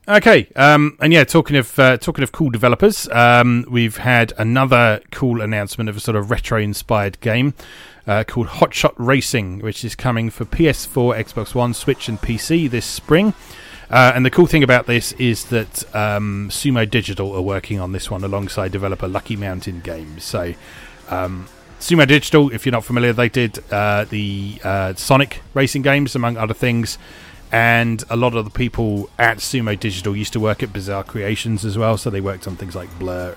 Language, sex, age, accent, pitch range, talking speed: English, male, 30-49, British, 100-130 Hz, 185 wpm